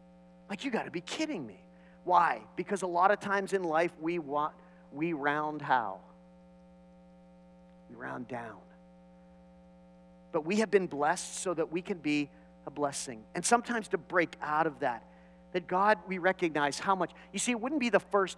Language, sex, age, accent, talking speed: English, male, 40-59, American, 180 wpm